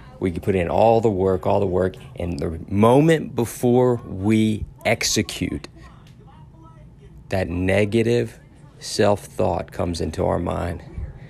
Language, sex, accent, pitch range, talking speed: English, male, American, 90-115 Hz, 120 wpm